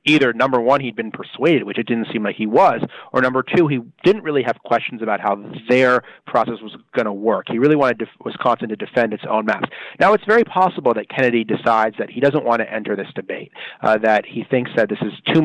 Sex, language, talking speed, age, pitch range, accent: male, English, 235 wpm, 30-49, 110-130 Hz, American